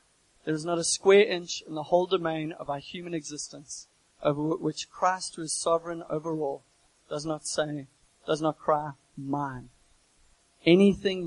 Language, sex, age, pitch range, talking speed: English, male, 30-49, 155-180 Hz, 160 wpm